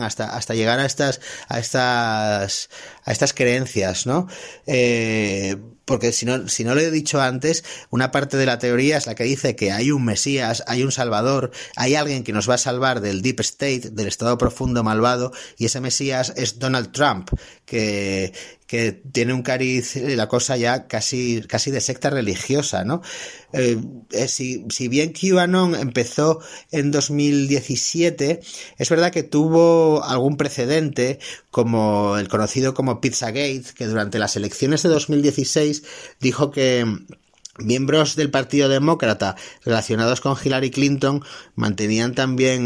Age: 30-49